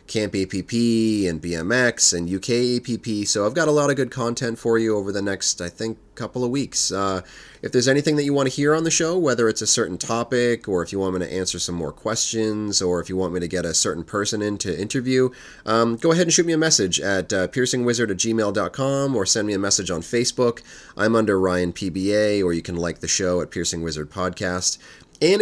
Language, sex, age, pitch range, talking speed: English, male, 30-49, 95-125 Hz, 230 wpm